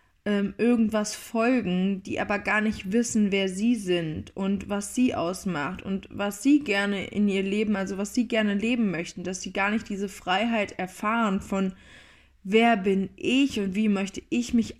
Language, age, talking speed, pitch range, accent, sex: German, 20-39, 175 wpm, 195-235 Hz, German, female